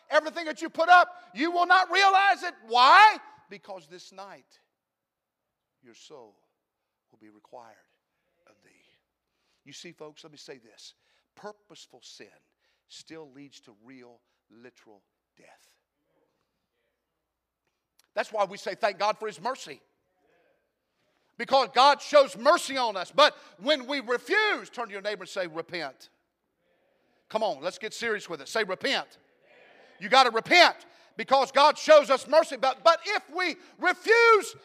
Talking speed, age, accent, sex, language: 145 wpm, 50-69, American, male, English